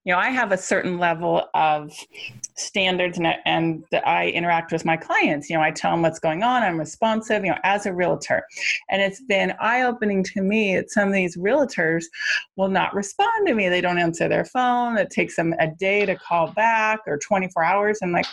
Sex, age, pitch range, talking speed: female, 30-49, 170-215 Hz, 215 wpm